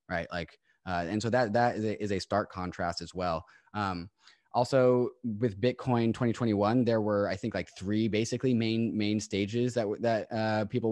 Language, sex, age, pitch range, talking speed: English, male, 20-39, 100-120 Hz, 185 wpm